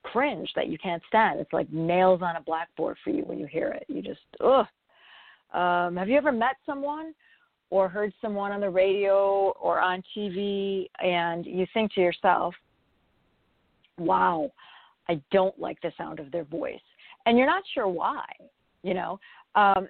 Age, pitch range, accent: 40-59, 180-220 Hz, American